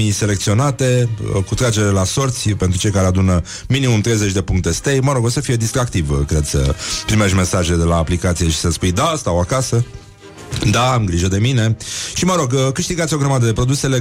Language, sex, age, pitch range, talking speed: Romanian, male, 30-49, 95-125 Hz, 195 wpm